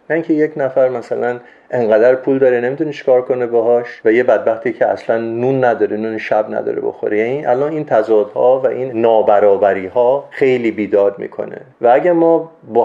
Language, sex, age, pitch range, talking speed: Persian, male, 40-59, 110-140 Hz, 180 wpm